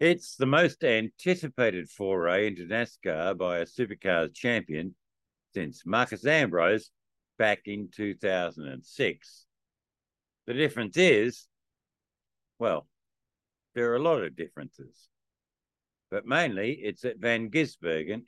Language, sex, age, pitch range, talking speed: English, male, 60-79, 95-120 Hz, 110 wpm